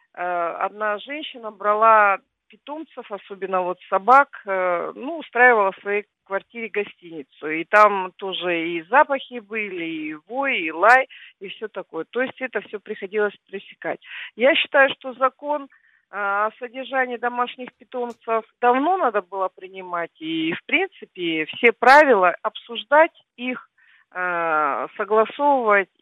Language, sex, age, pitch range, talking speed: Russian, female, 40-59, 200-255 Hz, 120 wpm